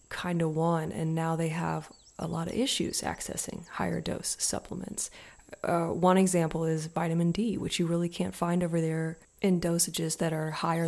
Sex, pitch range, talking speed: female, 160-190 Hz, 180 wpm